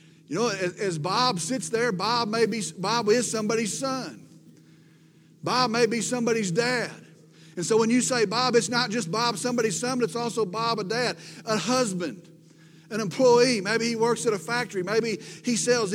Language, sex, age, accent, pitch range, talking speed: English, male, 40-59, American, 170-240 Hz, 185 wpm